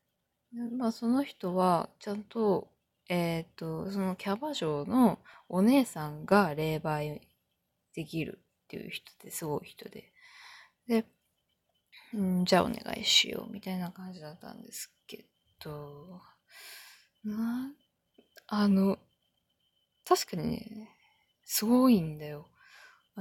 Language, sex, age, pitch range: Japanese, female, 20-39, 175-230 Hz